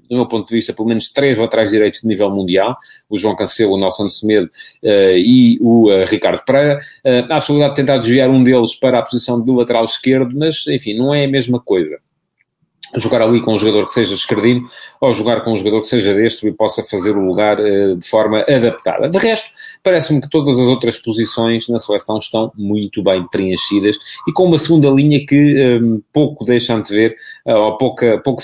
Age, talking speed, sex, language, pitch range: 40-59, 210 wpm, male, English, 105-130 Hz